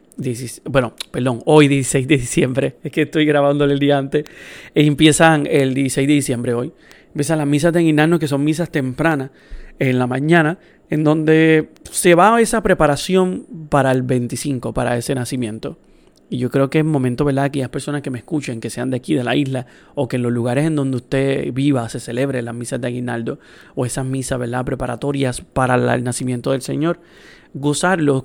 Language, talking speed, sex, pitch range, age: Spanish, 190 wpm, male, 125-150 Hz, 30-49